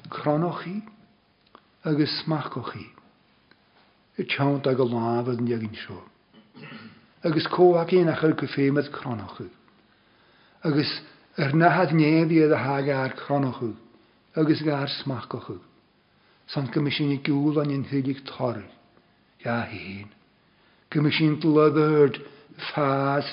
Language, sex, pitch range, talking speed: English, male, 120-150 Hz, 60 wpm